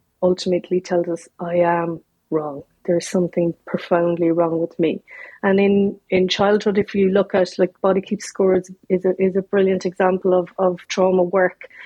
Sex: female